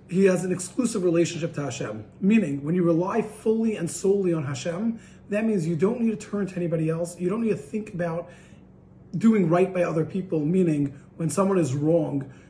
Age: 30-49